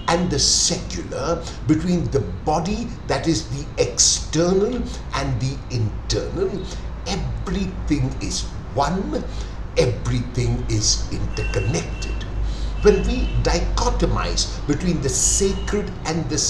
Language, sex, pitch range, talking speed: English, male, 105-180 Hz, 100 wpm